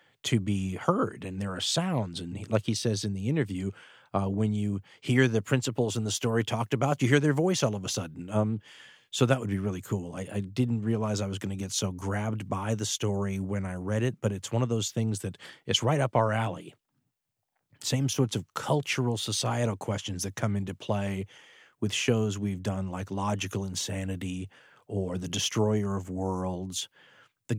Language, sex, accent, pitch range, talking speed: English, male, American, 95-120 Hz, 200 wpm